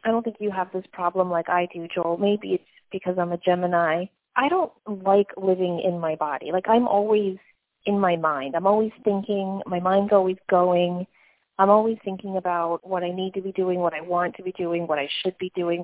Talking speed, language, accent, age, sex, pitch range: 220 wpm, English, American, 30-49, female, 175-215 Hz